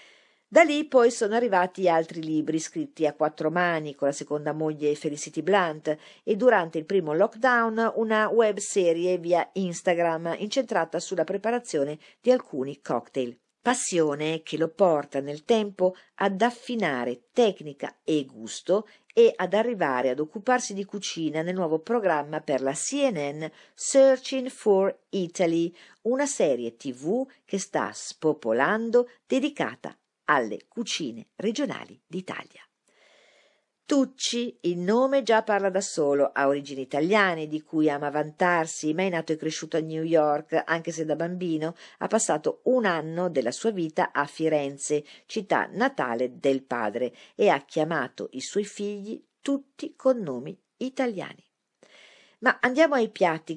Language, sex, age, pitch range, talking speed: Italian, female, 50-69, 155-220 Hz, 135 wpm